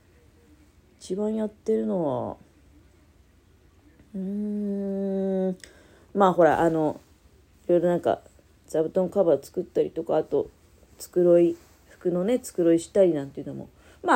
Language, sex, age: Japanese, female, 30-49